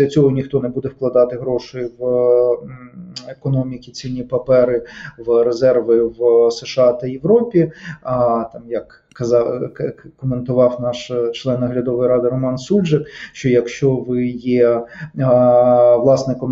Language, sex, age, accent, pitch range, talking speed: Ukrainian, male, 20-39, native, 125-150 Hz, 115 wpm